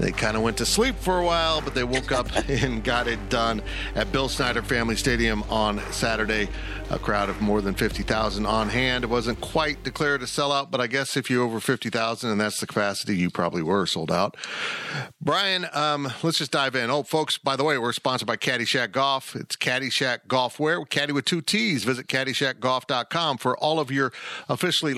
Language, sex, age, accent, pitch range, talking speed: English, male, 50-69, American, 115-145 Hz, 200 wpm